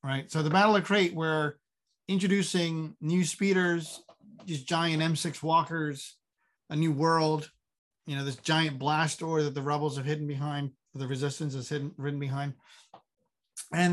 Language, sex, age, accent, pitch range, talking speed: English, male, 30-49, American, 150-190 Hz, 155 wpm